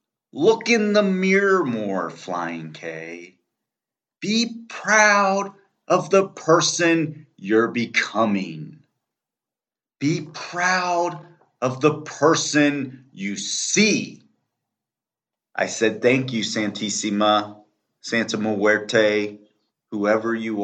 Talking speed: 85 wpm